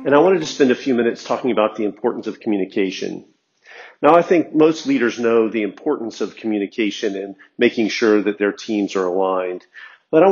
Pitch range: 105-140 Hz